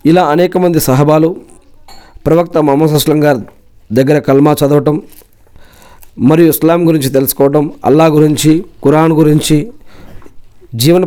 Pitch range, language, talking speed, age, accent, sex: 105-150 Hz, Telugu, 110 wpm, 50-69, native, male